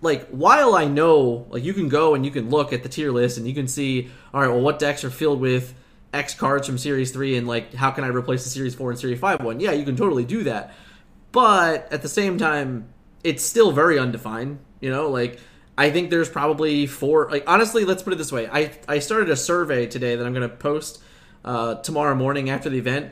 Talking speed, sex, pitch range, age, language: 240 wpm, male, 125-160 Hz, 20-39, English